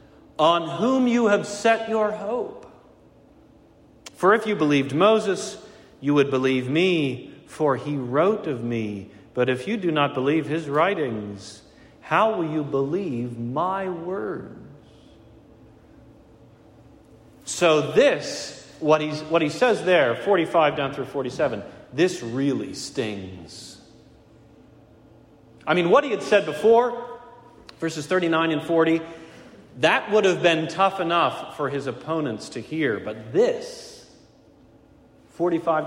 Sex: male